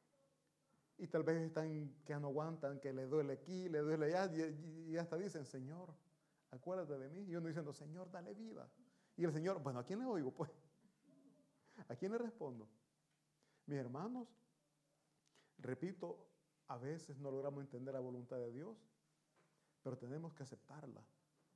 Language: Italian